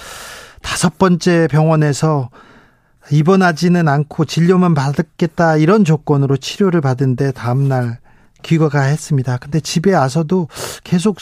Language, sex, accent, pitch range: Korean, male, native, 135-185 Hz